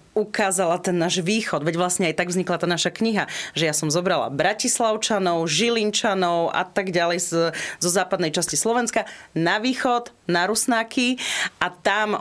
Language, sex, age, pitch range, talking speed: Slovak, female, 30-49, 170-205 Hz, 155 wpm